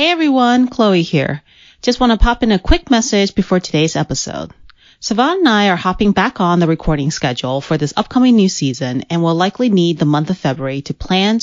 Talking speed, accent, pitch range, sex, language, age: 210 wpm, American, 155-235 Hz, female, English, 30-49